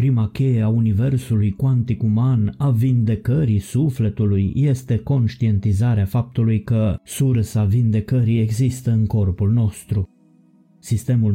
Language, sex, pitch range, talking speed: Romanian, male, 105-120 Hz, 105 wpm